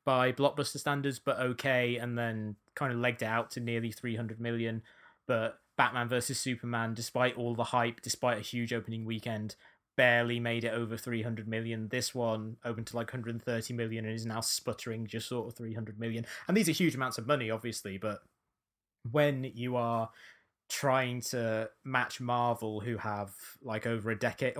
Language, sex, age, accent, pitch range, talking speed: English, male, 20-39, British, 115-130 Hz, 180 wpm